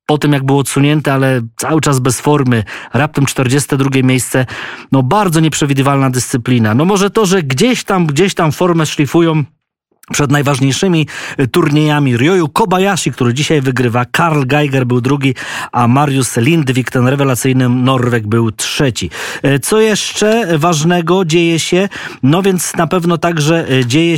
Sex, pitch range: male, 130-170 Hz